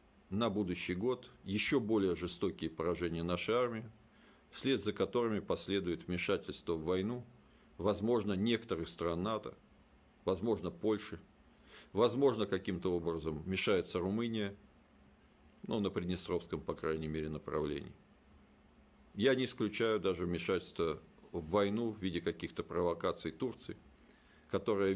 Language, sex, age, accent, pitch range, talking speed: Russian, male, 50-69, native, 85-110 Hz, 115 wpm